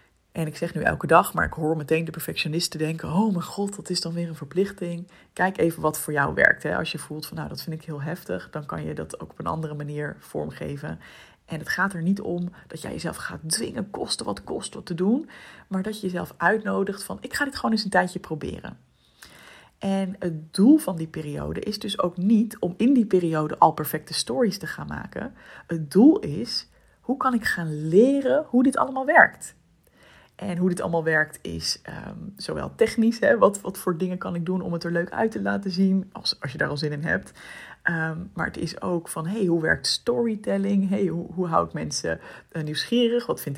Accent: Dutch